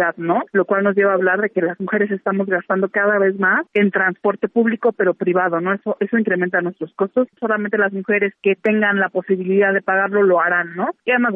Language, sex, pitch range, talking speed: Spanish, female, 185-215 Hz, 215 wpm